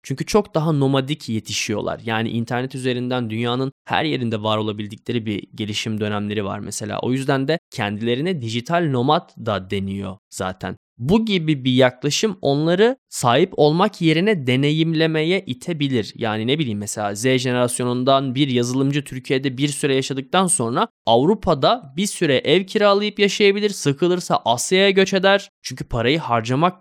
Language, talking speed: Turkish, 140 wpm